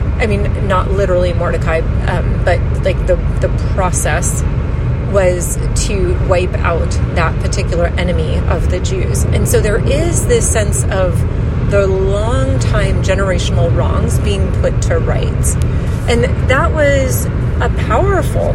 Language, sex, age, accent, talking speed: English, female, 30-49, American, 135 wpm